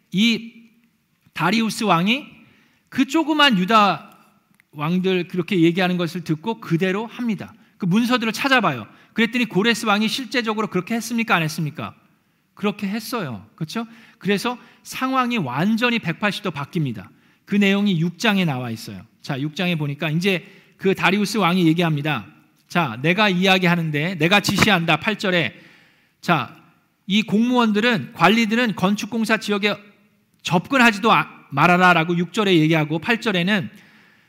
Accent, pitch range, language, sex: native, 165-215 Hz, Korean, male